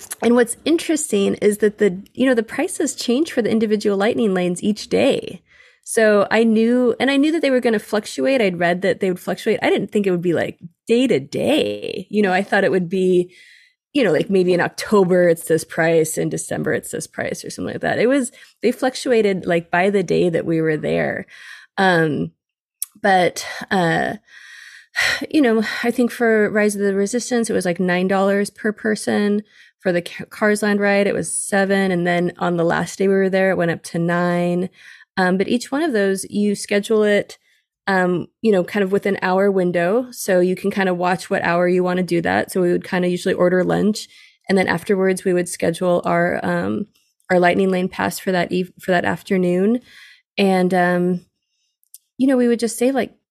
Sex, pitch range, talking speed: female, 180-225 Hz, 215 wpm